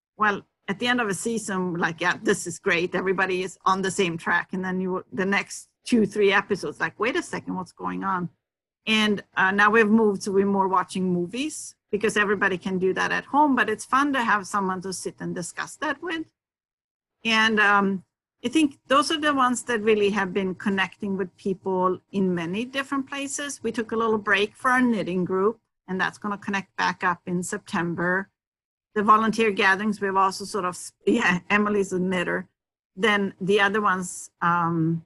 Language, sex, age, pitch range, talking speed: English, female, 50-69, 185-225 Hz, 195 wpm